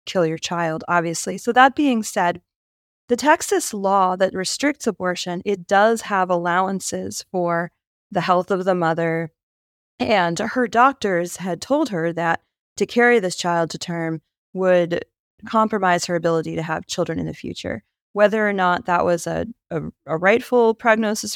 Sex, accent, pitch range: female, American, 170-220 Hz